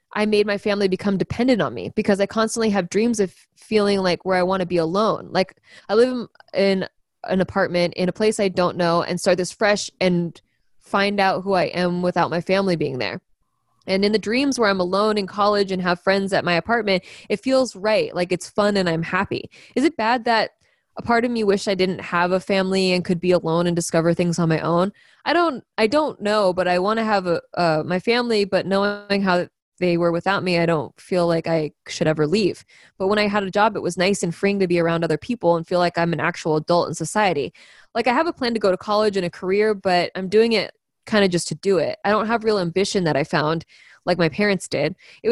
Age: 20-39